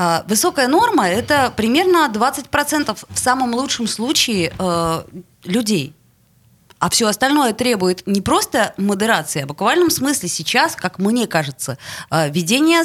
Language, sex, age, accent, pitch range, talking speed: Russian, female, 20-39, native, 180-255 Hz, 130 wpm